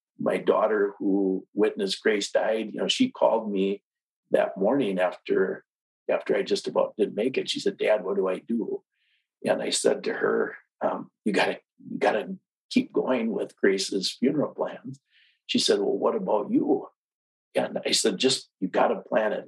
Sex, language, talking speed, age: male, English, 180 wpm, 50-69